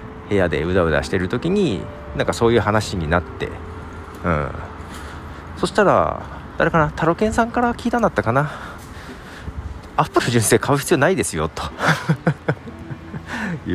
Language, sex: Japanese, male